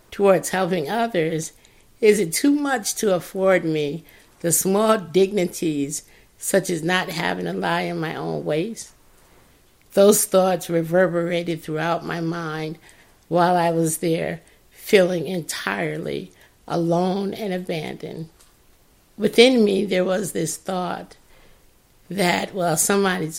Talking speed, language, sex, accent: 120 wpm, English, female, American